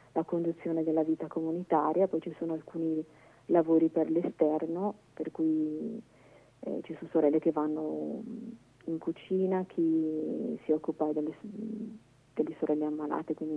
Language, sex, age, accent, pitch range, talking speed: Italian, female, 40-59, native, 155-190 Hz, 135 wpm